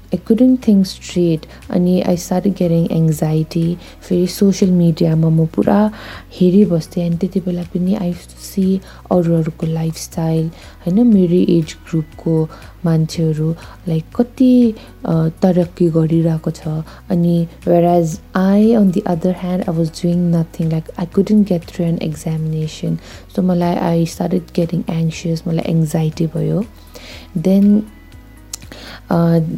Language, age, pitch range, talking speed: English, 20-39, 165-185 Hz, 130 wpm